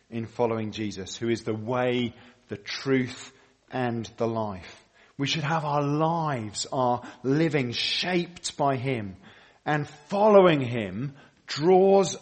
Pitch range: 115-145 Hz